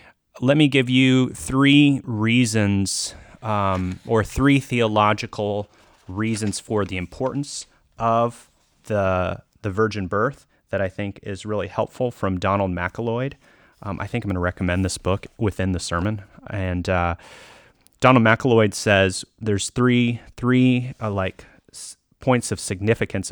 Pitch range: 95-120 Hz